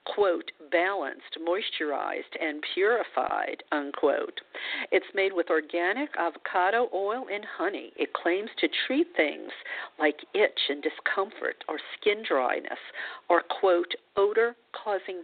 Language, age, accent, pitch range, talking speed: English, 50-69, American, 165-260 Hz, 115 wpm